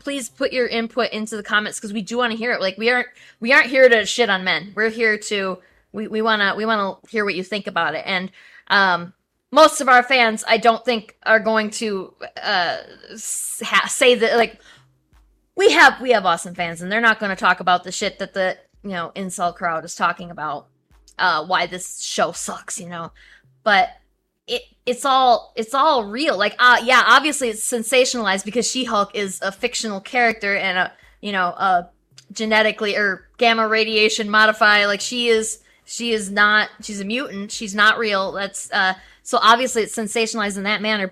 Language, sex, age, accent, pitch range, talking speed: English, female, 20-39, American, 195-240 Hz, 200 wpm